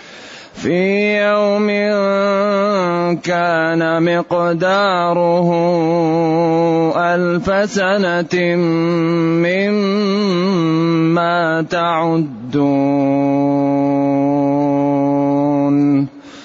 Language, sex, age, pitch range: Arabic, male, 30-49, 140-175 Hz